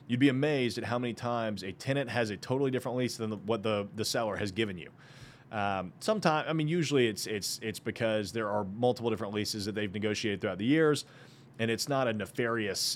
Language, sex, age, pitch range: English, male, 30-49, 115-140 Hz